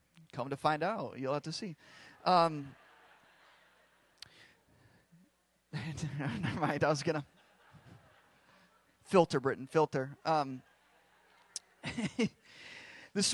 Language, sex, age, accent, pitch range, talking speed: English, male, 30-49, American, 140-175 Hz, 90 wpm